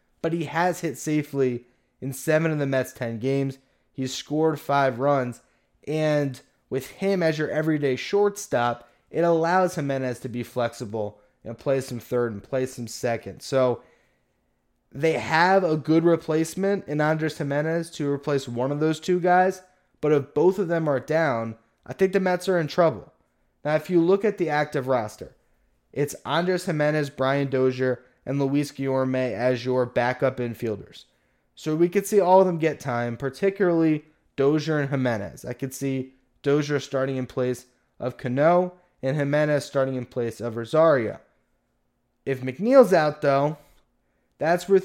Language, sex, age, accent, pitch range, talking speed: English, male, 20-39, American, 130-160 Hz, 165 wpm